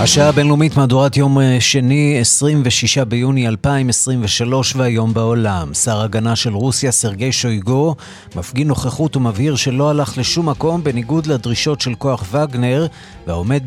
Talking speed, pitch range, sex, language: 125 wpm, 115-150 Hz, male, Hebrew